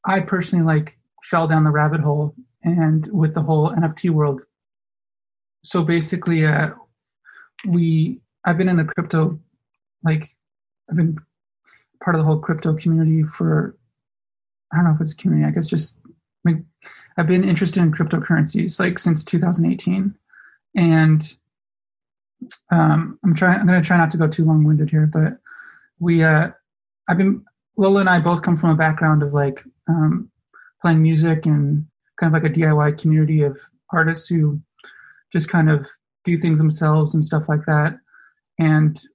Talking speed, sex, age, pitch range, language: 160 wpm, male, 20-39, 155-175 Hz, English